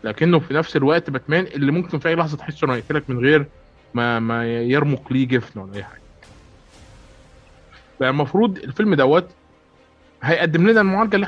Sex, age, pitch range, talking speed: male, 20-39, 115-155 Hz, 155 wpm